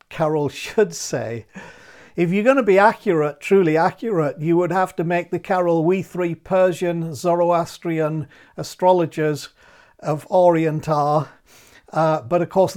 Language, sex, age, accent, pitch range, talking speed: English, male, 50-69, British, 155-180 Hz, 140 wpm